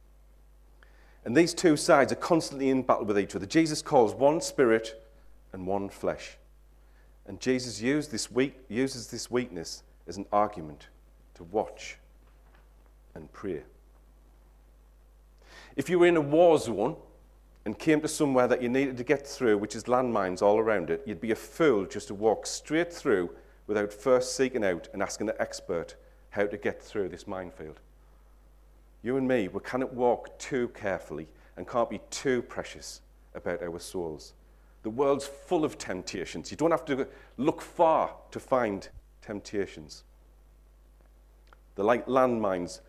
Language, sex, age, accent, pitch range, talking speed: English, male, 40-59, British, 80-135 Hz, 155 wpm